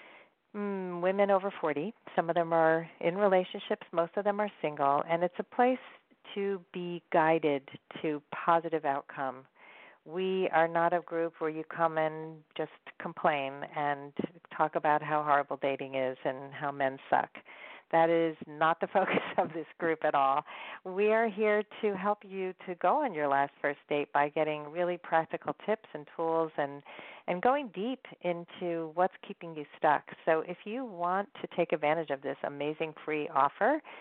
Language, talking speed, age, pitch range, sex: English, 175 wpm, 40-59, 150-200 Hz, female